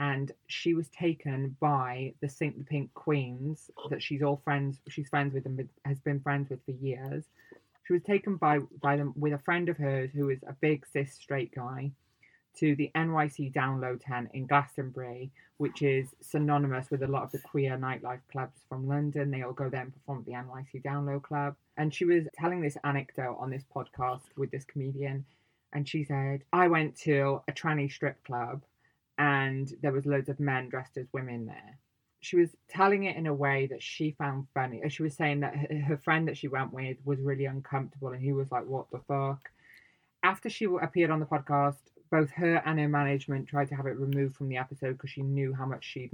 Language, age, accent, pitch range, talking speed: English, 20-39, British, 130-150 Hz, 210 wpm